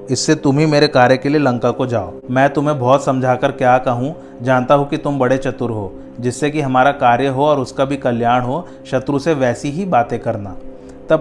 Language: Hindi